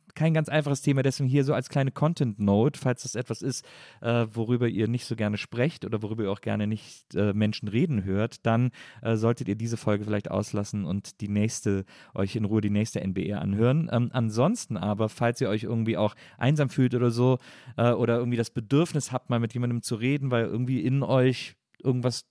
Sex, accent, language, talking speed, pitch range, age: male, German, German, 205 wpm, 105-130 Hz, 40-59